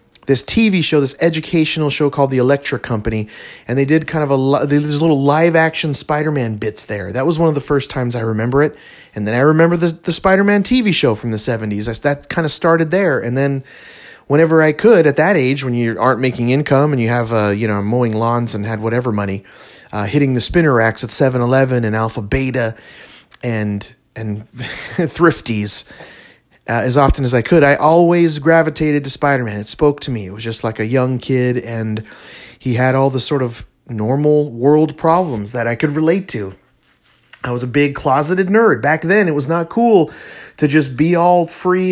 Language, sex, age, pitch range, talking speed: English, male, 30-49, 120-160 Hz, 205 wpm